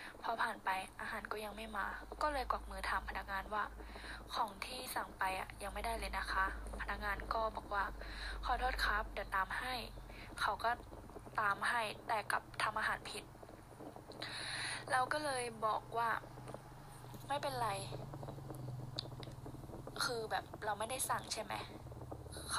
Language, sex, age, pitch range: Thai, female, 10-29, 195-250 Hz